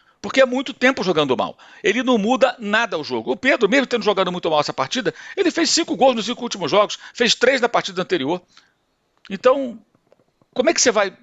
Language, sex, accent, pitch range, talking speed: Portuguese, male, Brazilian, 155-245 Hz, 215 wpm